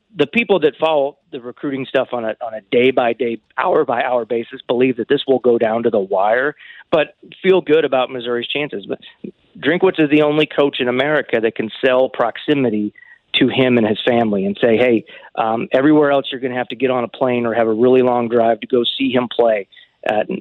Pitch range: 120-135 Hz